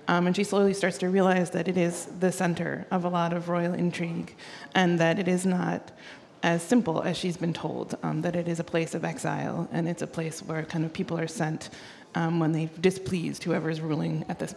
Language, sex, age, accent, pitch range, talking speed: English, female, 30-49, American, 170-190 Hz, 230 wpm